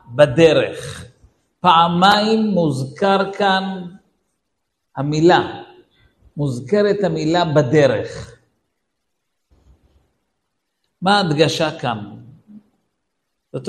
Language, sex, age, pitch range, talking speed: Hebrew, male, 50-69, 145-205 Hz, 55 wpm